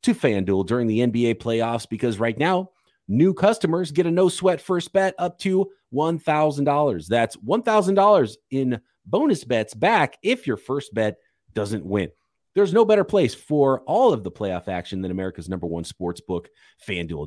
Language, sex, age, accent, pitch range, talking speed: English, male, 30-49, American, 100-160 Hz, 165 wpm